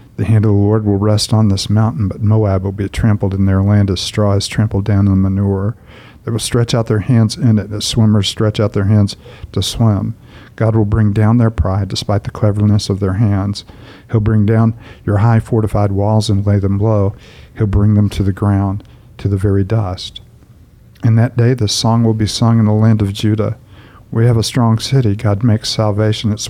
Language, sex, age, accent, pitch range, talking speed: English, male, 50-69, American, 100-115 Hz, 220 wpm